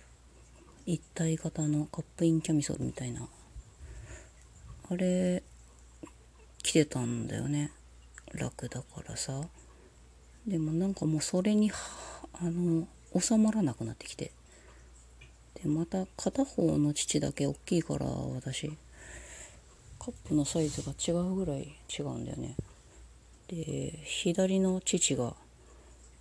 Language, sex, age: Japanese, female, 40-59